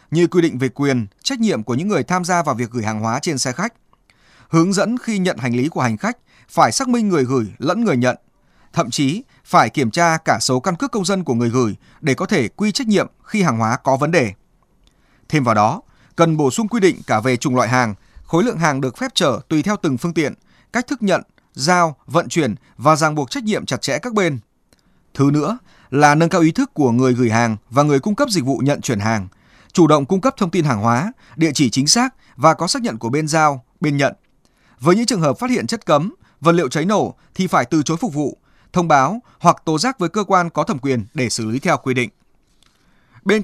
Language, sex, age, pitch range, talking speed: Vietnamese, male, 20-39, 130-190 Hz, 245 wpm